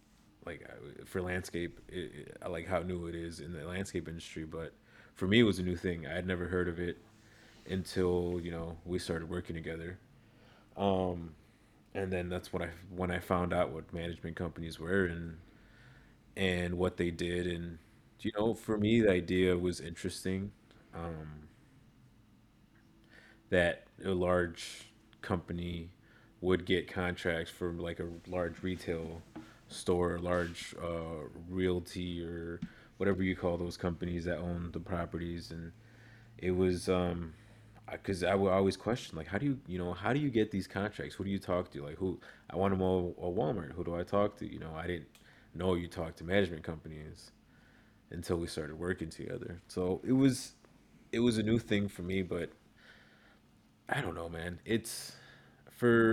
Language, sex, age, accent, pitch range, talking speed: English, male, 30-49, American, 85-100 Hz, 170 wpm